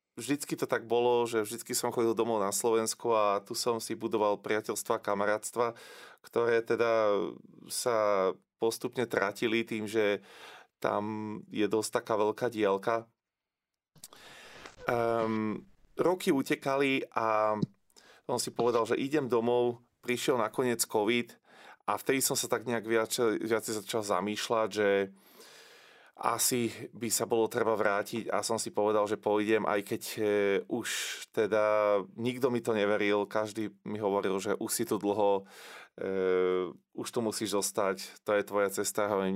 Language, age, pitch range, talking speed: Slovak, 30-49, 100-120 Hz, 140 wpm